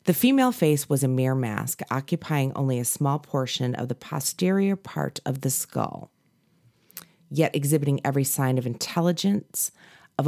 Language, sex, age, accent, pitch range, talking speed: English, female, 30-49, American, 130-170 Hz, 150 wpm